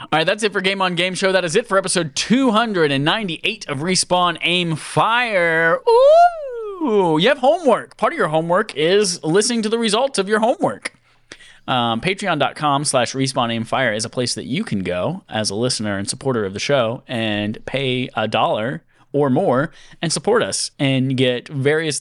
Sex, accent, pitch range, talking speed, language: male, American, 125-185 Hz, 185 wpm, English